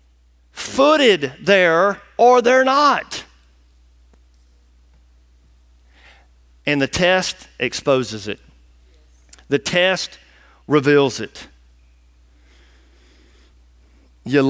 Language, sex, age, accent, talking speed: English, male, 40-59, American, 60 wpm